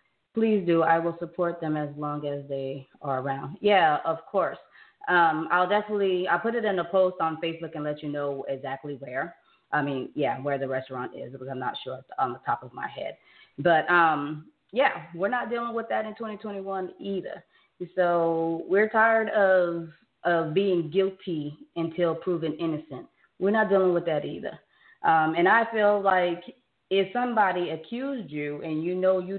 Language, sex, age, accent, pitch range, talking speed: English, female, 20-39, American, 150-190 Hz, 180 wpm